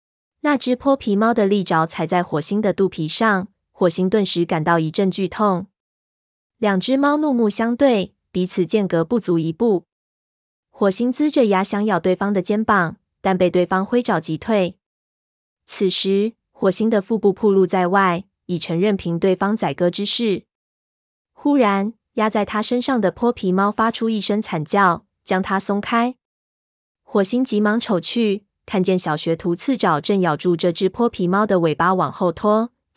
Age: 20-39